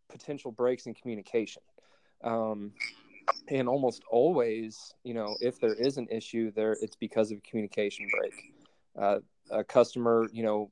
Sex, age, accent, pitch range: male, 20-39, American, 105-120 Hz